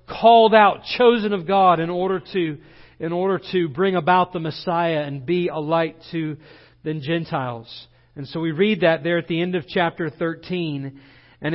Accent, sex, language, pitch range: American, male, English, 145-190 Hz